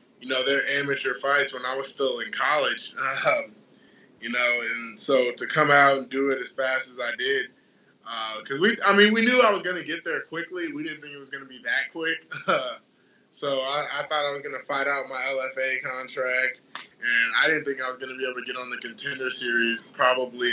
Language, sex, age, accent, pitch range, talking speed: English, male, 20-39, American, 125-145 Hz, 240 wpm